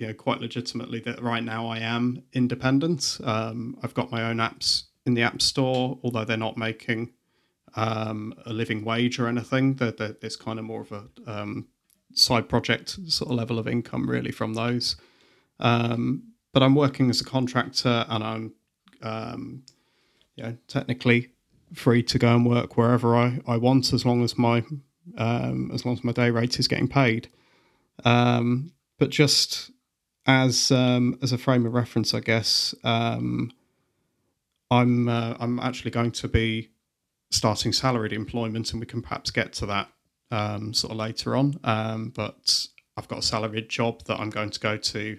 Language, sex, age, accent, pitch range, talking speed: English, male, 30-49, British, 110-125 Hz, 175 wpm